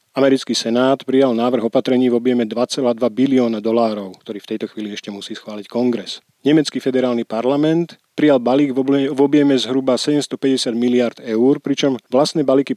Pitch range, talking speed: 115-140 Hz, 150 wpm